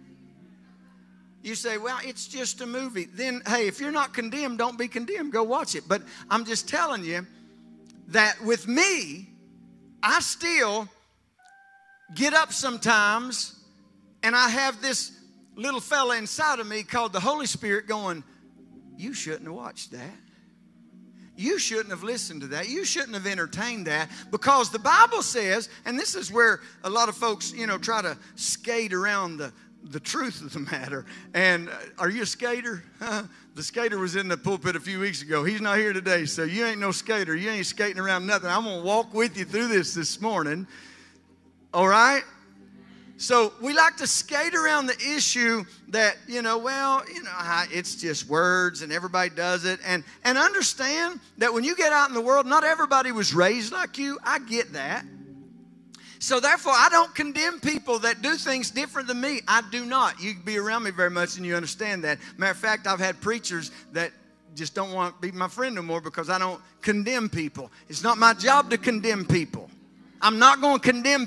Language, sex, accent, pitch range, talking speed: English, male, American, 180-255 Hz, 190 wpm